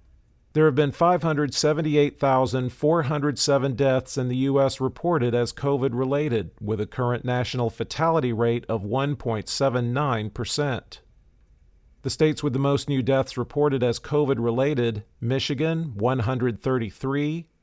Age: 50-69